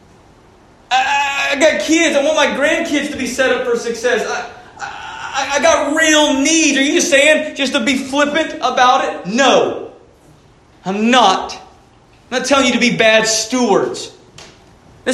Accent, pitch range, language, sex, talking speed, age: American, 200-285 Hz, English, male, 170 wpm, 30-49